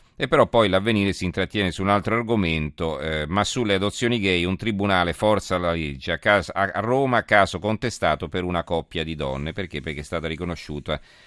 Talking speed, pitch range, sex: 195 wpm, 85-105 Hz, male